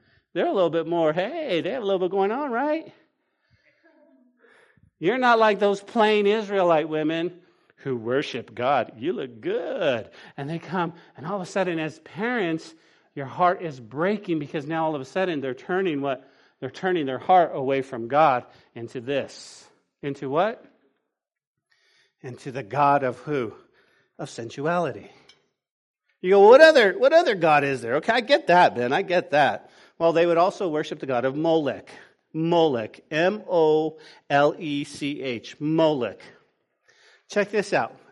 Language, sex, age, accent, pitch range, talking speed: English, male, 40-59, American, 140-195 Hz, 165 wpm